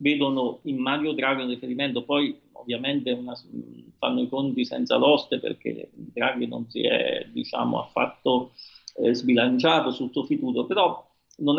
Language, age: Italian, 40-59